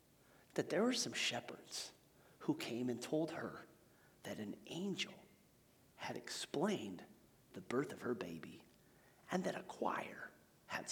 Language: English